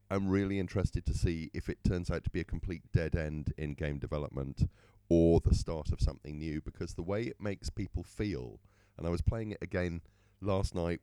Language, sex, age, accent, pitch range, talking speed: English, male, 40-59, British, 80-100 Hz, 210 wpm